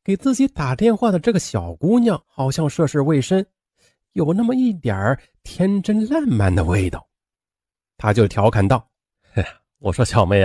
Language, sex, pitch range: Chinese, male, 95-150 Hz